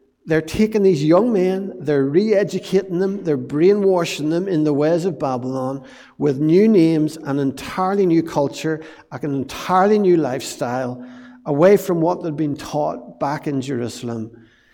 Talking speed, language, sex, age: 145 wpm, English, male, 60-79